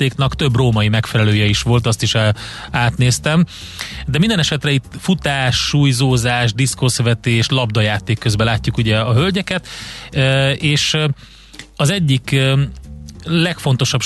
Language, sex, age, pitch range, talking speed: Hungarian, male, 30-49, 115-140 Hz, 105 wpm